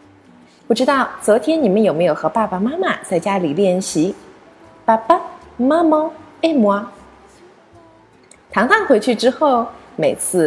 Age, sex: 20-39, female